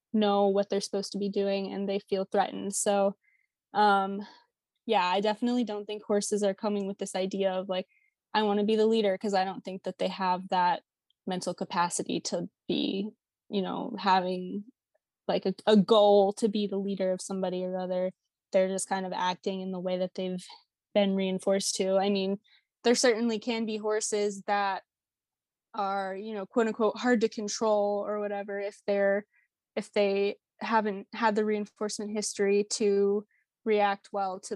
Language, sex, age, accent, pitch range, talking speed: English, female, 20-39, American, 195-210 Hz, 175 wpm